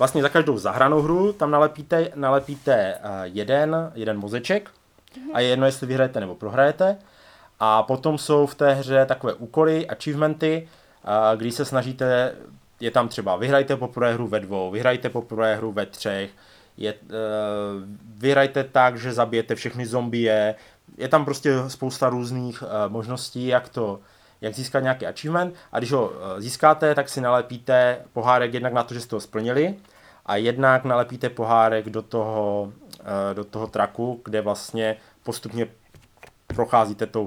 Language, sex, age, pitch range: Czech, male, 20-39, 110-140 Hz